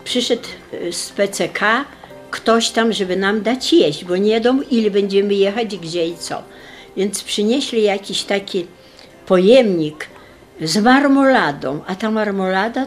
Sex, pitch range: female, 180-240 Hz